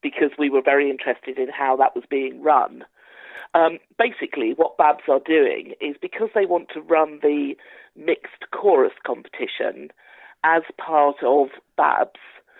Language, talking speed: English, 150 wpm